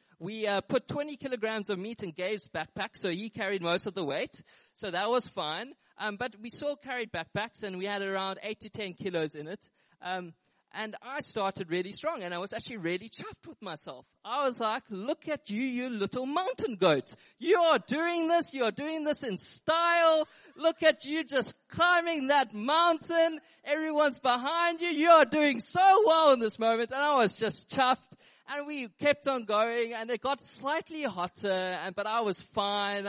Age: 20-39